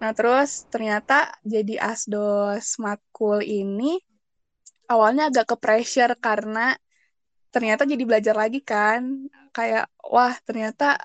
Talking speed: 105 wpm